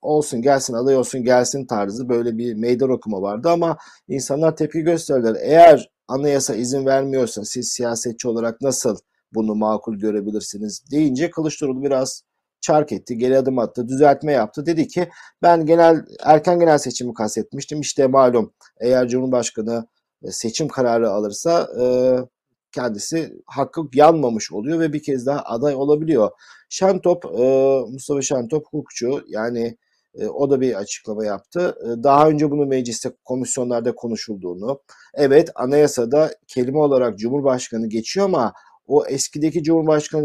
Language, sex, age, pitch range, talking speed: Turkish, male, 50-69, 120-150 Hz, 135 wpm